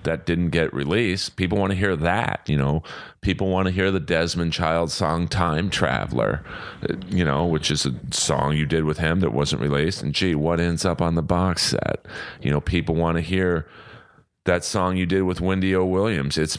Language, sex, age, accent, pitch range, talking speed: English, male, 40-59, American, 75-95 Hz, 210 wpm